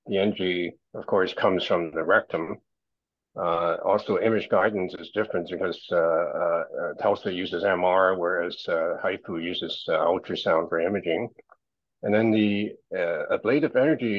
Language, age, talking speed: English, 60-79, 145 wpm